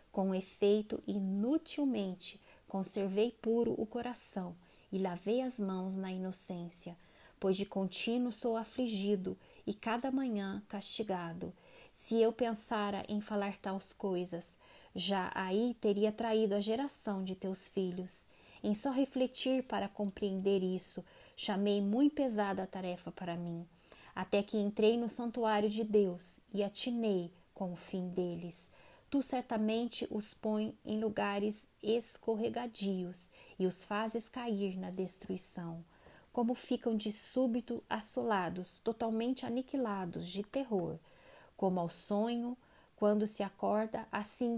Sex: female